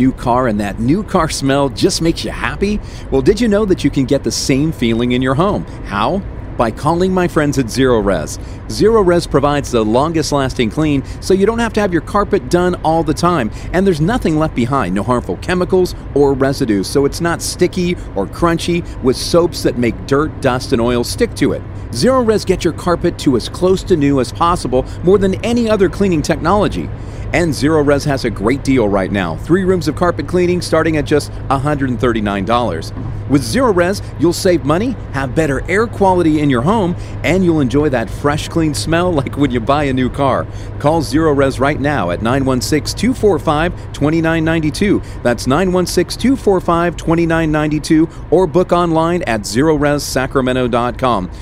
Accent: American